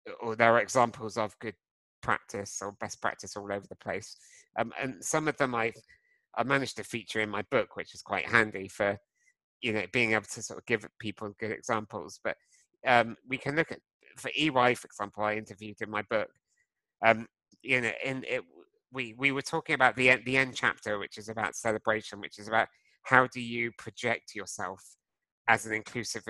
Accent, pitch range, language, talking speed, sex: British, 105-130 Hz, English, 200 wpm, male